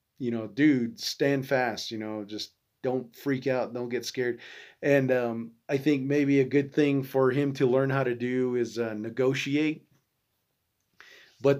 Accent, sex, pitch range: American, male, 120-140 Hz